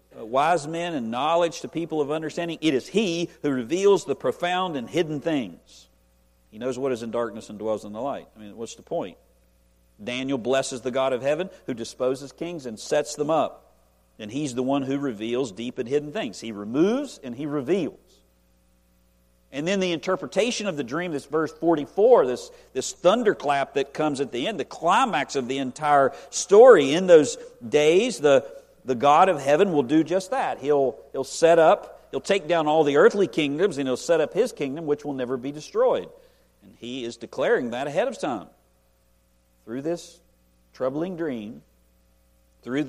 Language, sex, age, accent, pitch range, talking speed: English, male, 50-69, American, 105-160 Hz, 190 wpm